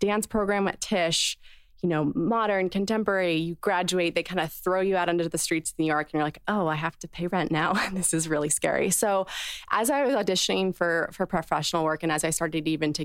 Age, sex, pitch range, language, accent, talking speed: 20-39, female, 160-195 Hz, English, American, 235 wpm